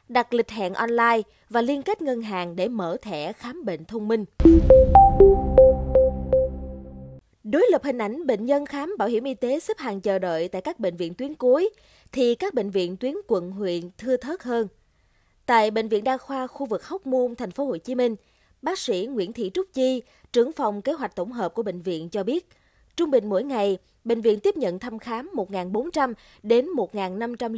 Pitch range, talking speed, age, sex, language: 200-275 Hz, 200 wpm, 20-39, female, Vietnamese